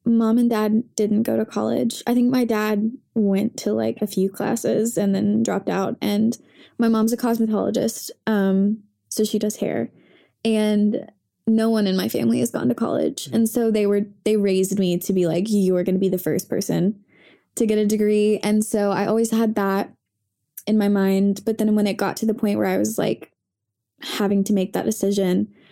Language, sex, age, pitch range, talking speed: English, female, 20-39, 200-230 Hz, 210 wpm